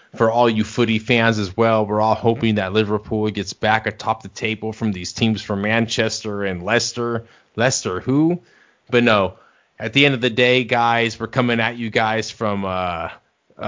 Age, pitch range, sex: 30-49, 105-115 Hz, male